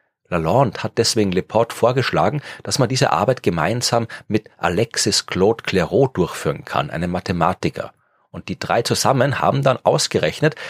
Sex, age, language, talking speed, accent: male, 40-59, German, 140 wpm, German